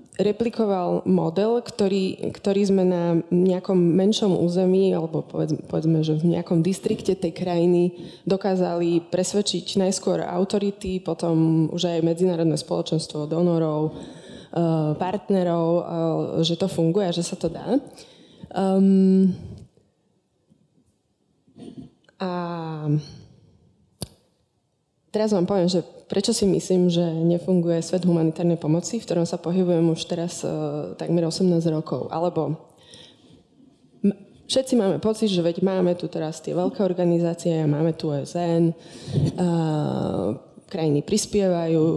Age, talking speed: 20-39, 110 wpm